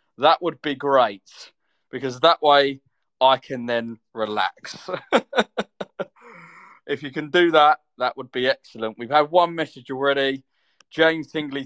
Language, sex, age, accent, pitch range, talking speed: English, male, 20-39, British, 130-155 Hz, 140 wpm